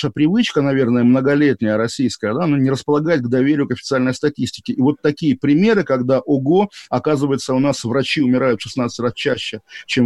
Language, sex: Russian, male